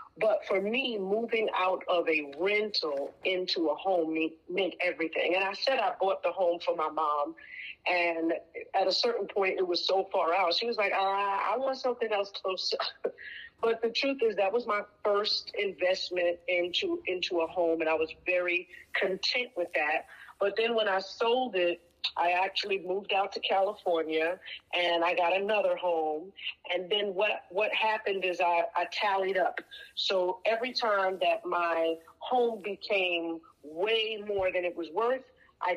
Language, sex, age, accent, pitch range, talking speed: English, female, 40-59, American, 175-215 Hz, 175 wpm